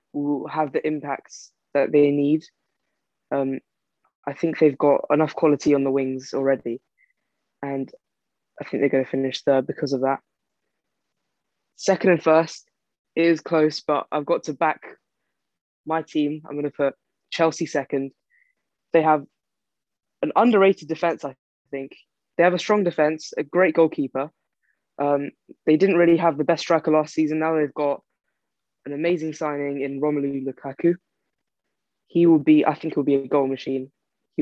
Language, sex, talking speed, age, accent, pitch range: English, female, 160 wpm, 20-39, British, 140-160 Hz